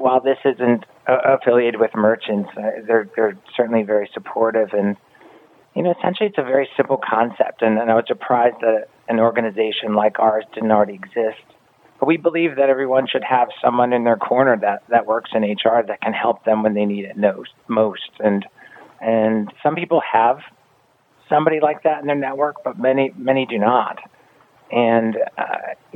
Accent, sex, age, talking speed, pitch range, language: American, male, 40-59, 175 wpm, 110-135 Hz, English